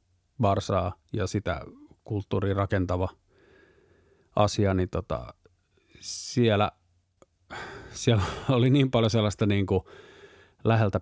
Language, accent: Finnish, native